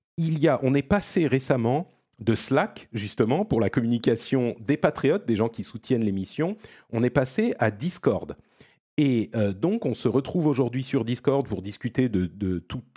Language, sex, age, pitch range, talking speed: French, male, 40-59, 110-150 Hz, 180 wpm